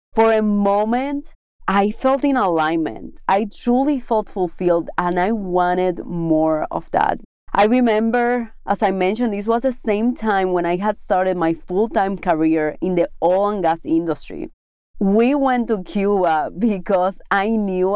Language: English